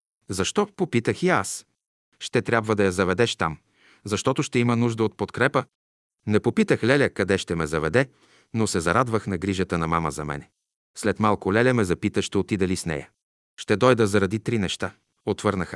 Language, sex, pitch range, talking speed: Bulgarian, male, 95-120 Hz, 185 wpm